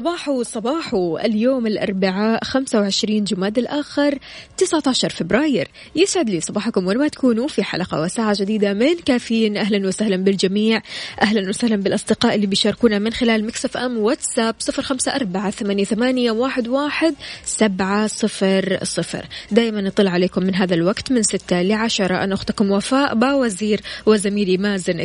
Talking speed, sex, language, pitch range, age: 130 wpm, female, Arabic, 195-250 Hz, 20-39